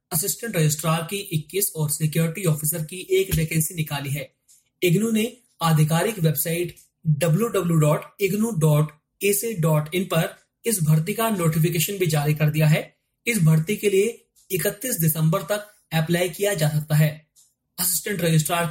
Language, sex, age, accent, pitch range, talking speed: Hindi, male, 30-49, native, 155-190 Hz, 130 wpm